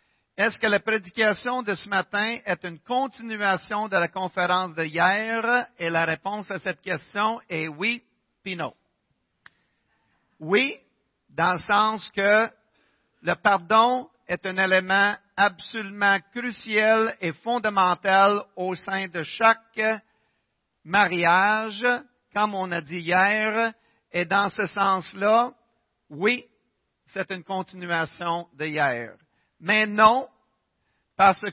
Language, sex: French, male